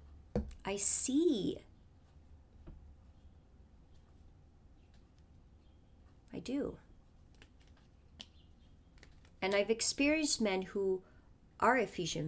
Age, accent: 30-49, American